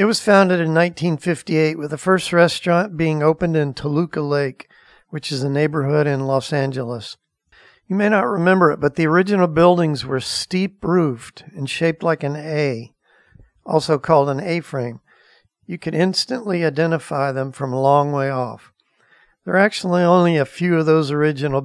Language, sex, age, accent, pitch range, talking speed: English, male, 50-69, American, 140-170 Hz, 165 wpm